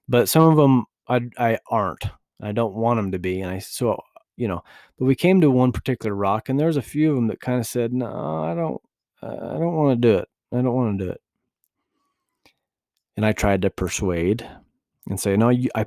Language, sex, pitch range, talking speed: English, male, 105-130 Hz, 225 wpm